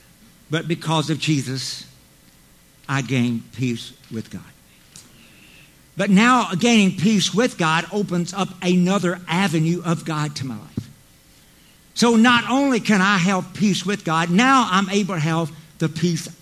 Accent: American